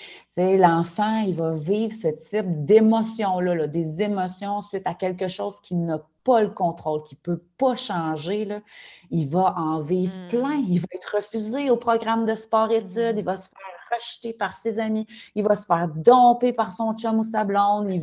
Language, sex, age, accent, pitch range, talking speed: French, female, 30-49, Canadian, 175-225 Hz, 185 wpm